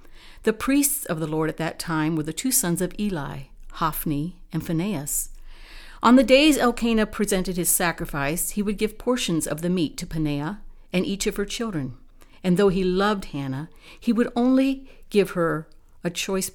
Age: 60-79